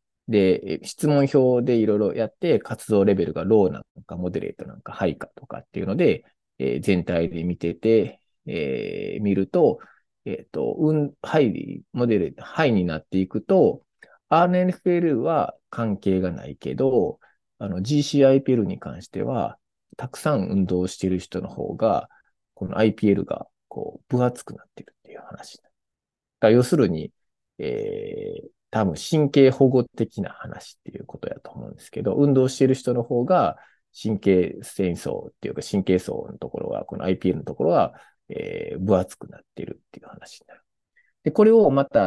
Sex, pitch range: male, 95-150 Hz